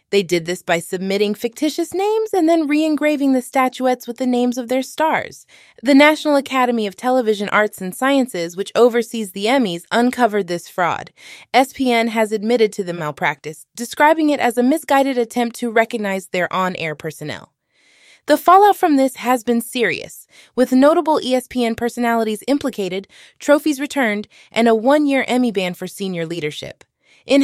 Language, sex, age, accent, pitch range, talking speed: English, female, 20-39, American, 215-270 Hz, 160 wpm